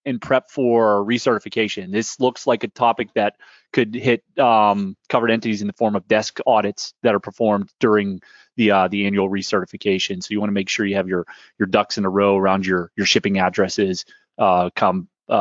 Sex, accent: male, American